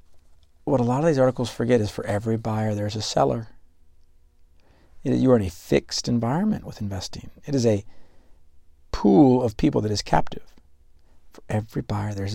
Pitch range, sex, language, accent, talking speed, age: 75-120 Hz, male, English, American, 170 wpm, 50-69